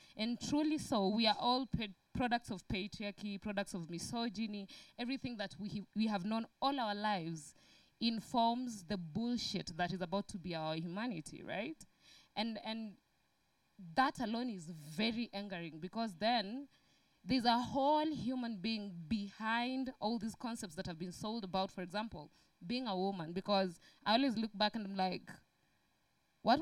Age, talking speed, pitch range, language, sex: 20-39, 155 wpm, 195-235 Hz, English, female